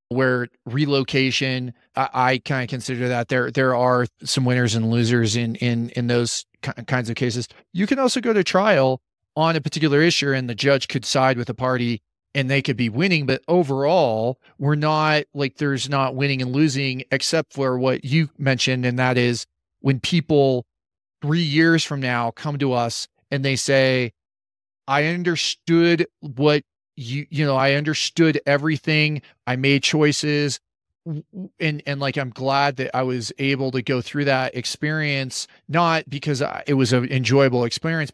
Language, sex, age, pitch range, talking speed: English, male, 40-59, 125-150 Hz, 170 wpm